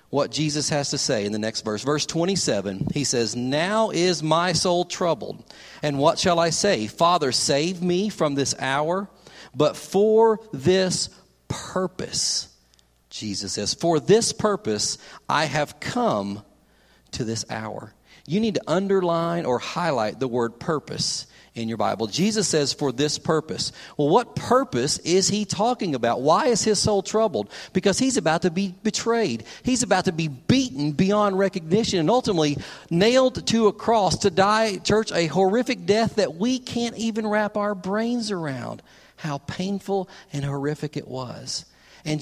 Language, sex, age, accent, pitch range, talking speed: English, male, 40-59, American, 145-205 Hz, 160 wpm